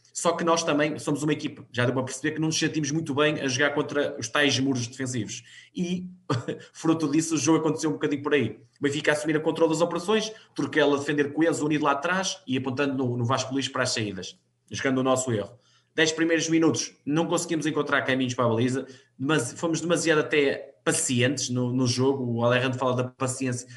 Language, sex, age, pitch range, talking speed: Portuguese, male, 20-39, 130-155 Hz, 215 wpm